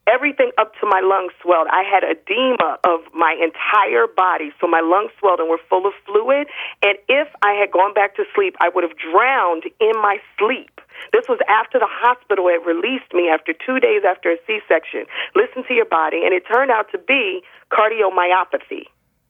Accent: American